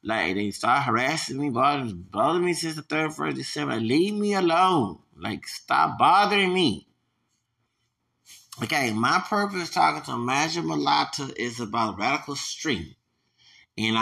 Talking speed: 135 wpm